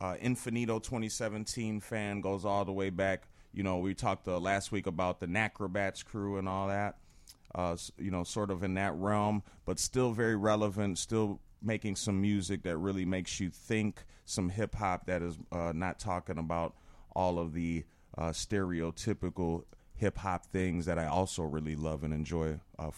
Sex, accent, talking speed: male, American, 180 wpm